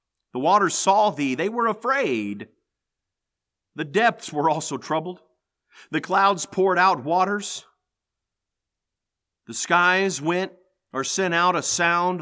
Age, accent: 50-69, American